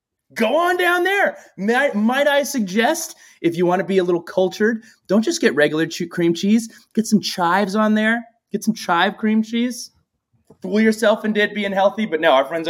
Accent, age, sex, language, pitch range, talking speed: American, 20-39, male, English, 155-220 Hz, 195 wpm